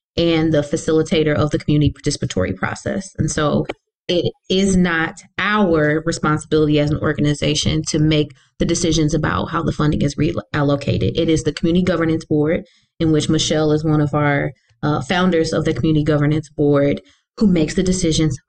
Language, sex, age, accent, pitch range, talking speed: English, female, 20-39, American, 150-175 Hz, 170 wpm